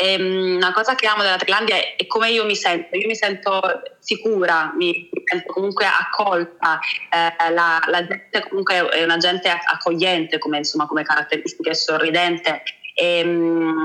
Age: 20-39